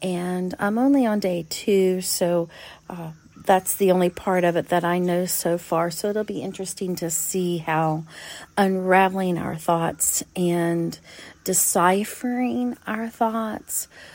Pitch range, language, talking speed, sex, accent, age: 170-200 Hz, English, 140 wpm, female, American, 40-59